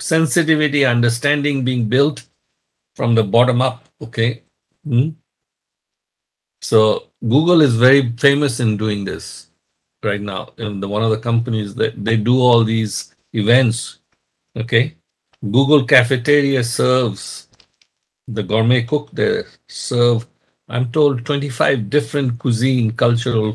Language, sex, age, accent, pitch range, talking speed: English, male, 50-69, Indian, 110-140 Hz, 120 wpm